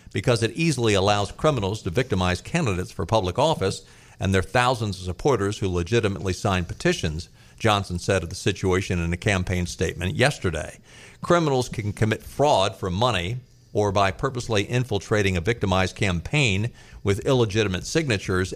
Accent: American